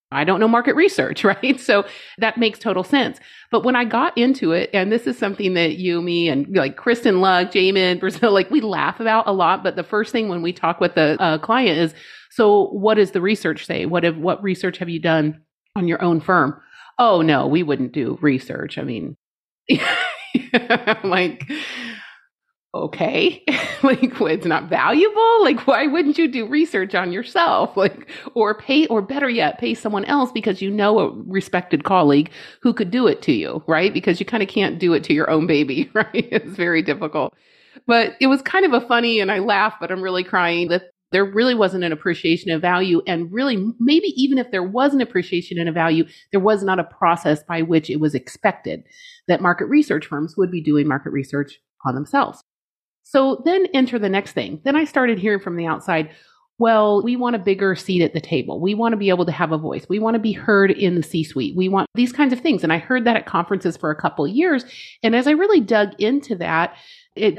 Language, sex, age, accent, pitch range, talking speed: English, female, 30-49, American, 170-245 Hz, 220 wpm